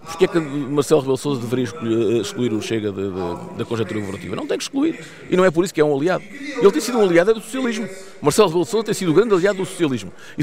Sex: male